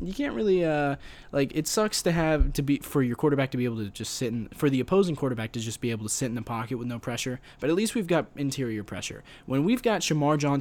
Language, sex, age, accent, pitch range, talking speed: English, male, 20-39, American, 115-160 Hz, 275 wpm